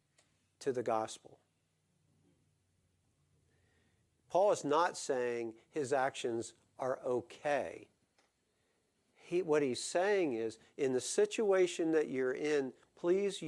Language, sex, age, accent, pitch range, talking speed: English, male, 50-69, American, 125-160 Hz, 100 wpm